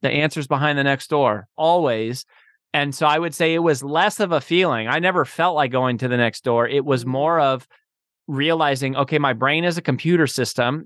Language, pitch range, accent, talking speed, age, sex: English, 130-160 Hz, American, 215 wpm, 30-49, male